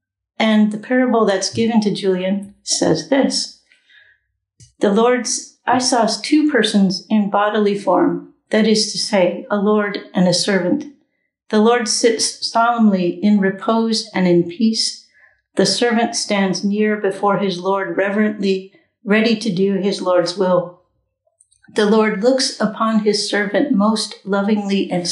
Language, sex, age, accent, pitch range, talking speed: English, female, 60-79, American, 195-230 Hz, 140 wpm